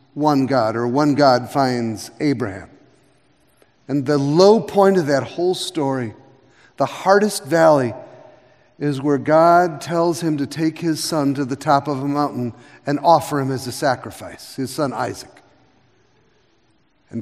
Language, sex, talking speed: English, male, 150 wpm